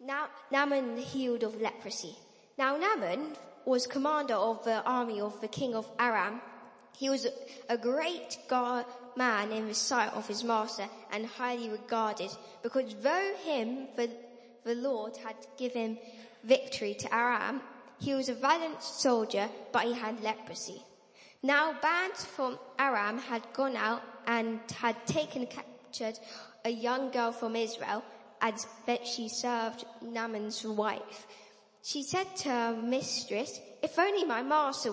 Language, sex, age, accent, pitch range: Japanese, female, 10-29, British, 220-260 Hz